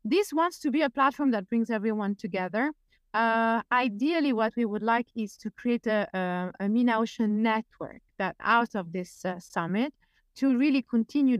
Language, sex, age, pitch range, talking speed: English, female, 30-49, 210-270 Hz, 170 wpm